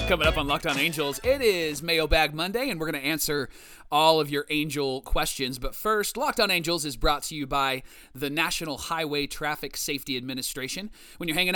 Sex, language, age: male, English, 30-49